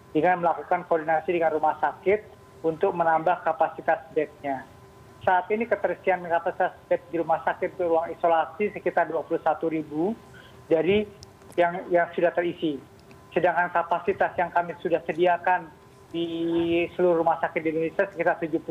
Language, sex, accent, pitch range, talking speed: Indonesian, male, native, 160-175 Hz, 130 wpm